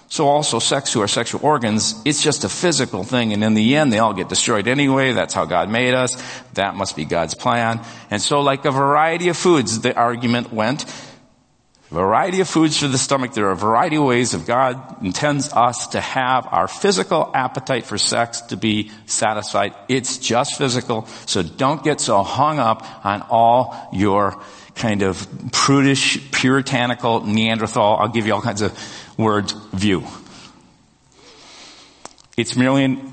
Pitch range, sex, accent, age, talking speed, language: 110-140 Hz, male, American, 50-69, 170 wpm, English